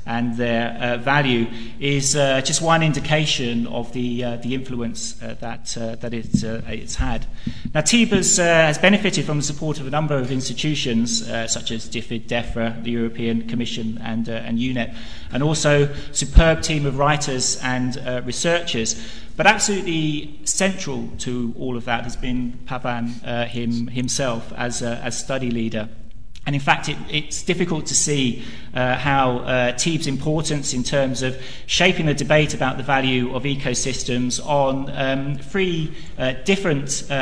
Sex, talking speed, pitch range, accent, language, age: male, 170 wpm, 120-145 Hz, British, English, 30-49